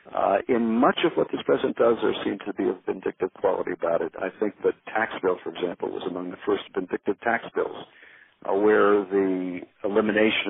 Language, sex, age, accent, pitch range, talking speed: English, male, 50-69, American, 95-125 Hz, 200 wpm